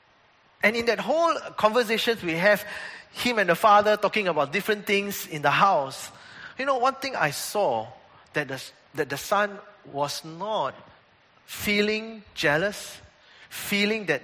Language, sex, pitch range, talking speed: English, male, 140-205 Hz, 150 wpm